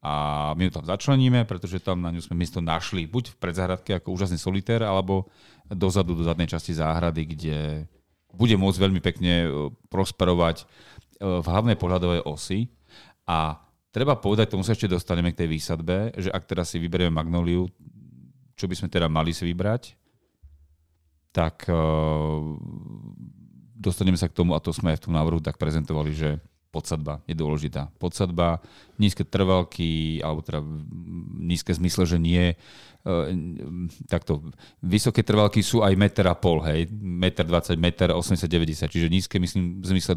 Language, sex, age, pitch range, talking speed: Slovak, male, 40-59, 80-95 Hz, 150 wpm